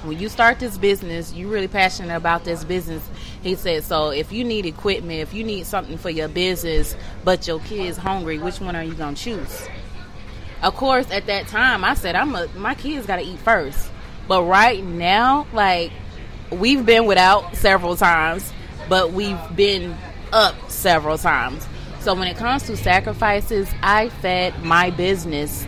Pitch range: 165-225 Hz